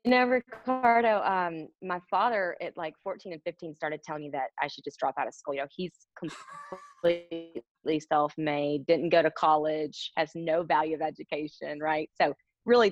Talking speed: 175 wpm